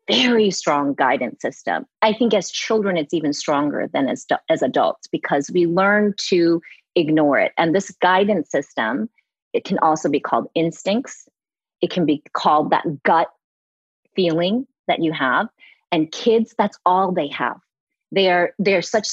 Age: 30-49